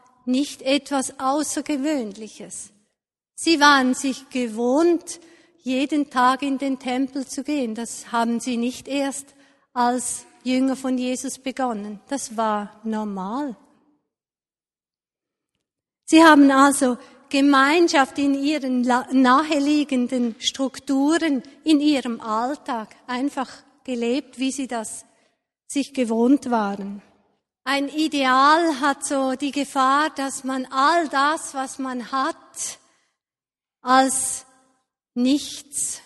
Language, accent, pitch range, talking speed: German, Swiss, 245-280 Hz, 100 wpm